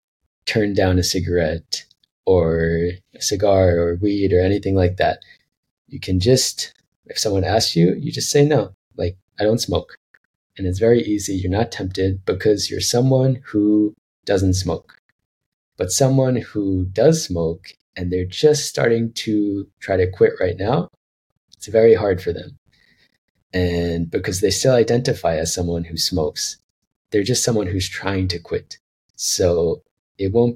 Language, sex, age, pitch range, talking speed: English, male, 20-39, 90-115 Hz, 155 wpm